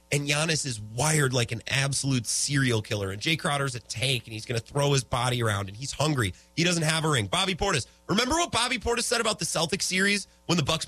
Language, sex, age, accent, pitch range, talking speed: English, male, 30-49, American, 100-160 Hz, 245 wpm